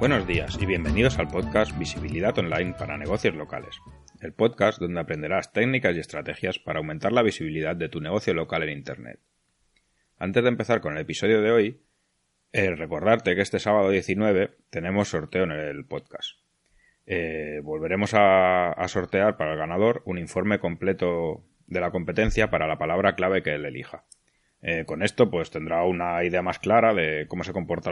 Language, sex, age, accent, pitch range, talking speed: Spanish, male, 30-49, Spanish, 80-95 Hz, 175 wpm